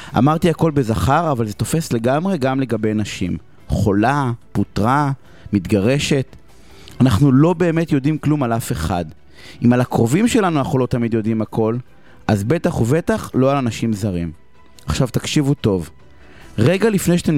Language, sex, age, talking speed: Hebrew, male, 30-49, 150 wpm